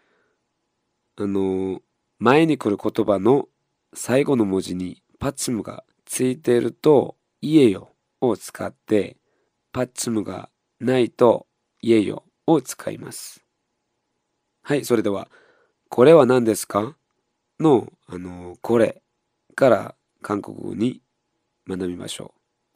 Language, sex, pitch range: Japanese, male, 95-120 Hz